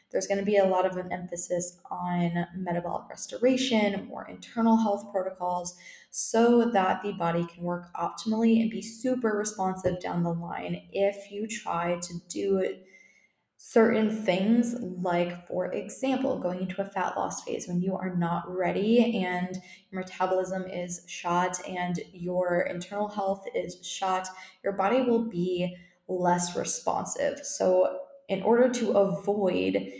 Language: English